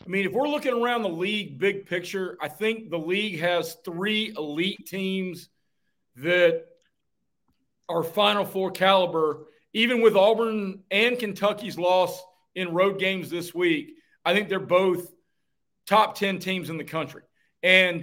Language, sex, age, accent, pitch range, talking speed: English, male, 40-59, American, 180-240 Hz, 150 wpm